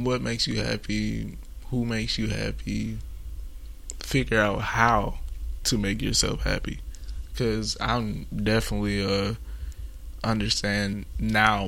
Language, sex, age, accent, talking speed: English, male, 20-39, American, 110 wpm